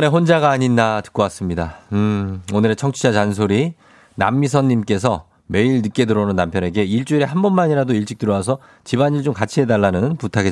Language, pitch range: Korean, 100-140 Hz